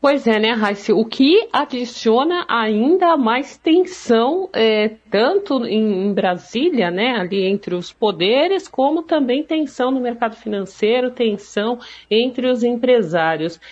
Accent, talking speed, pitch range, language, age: Brazilian, 125 wpm, 180-245 Hz, Portuguese, 50-69